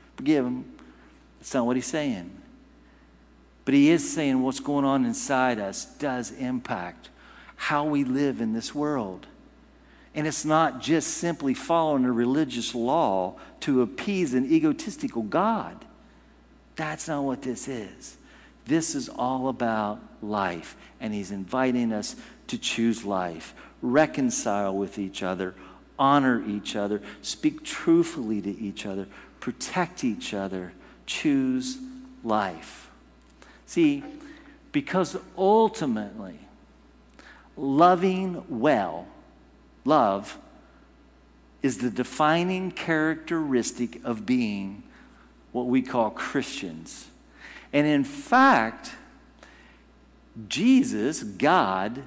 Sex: male